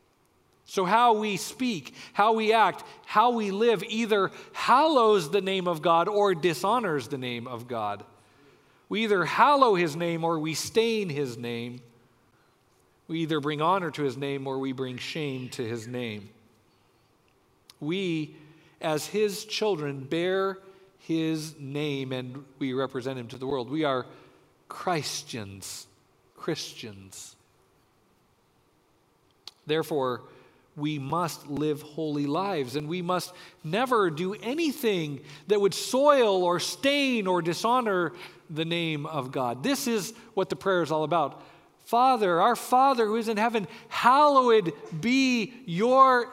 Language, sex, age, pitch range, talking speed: English, male, 50-69, 140-215 Hz, 135 wpm